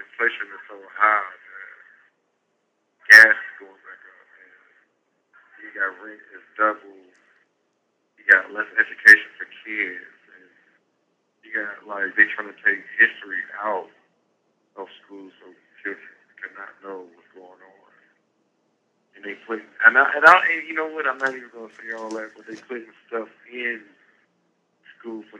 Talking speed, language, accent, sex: 160 wpm, English, American, male